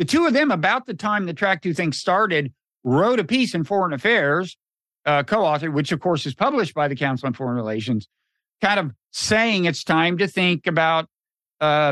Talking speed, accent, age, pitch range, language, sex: 200 wpm, American, 50-69, 150-200 Hz, English, male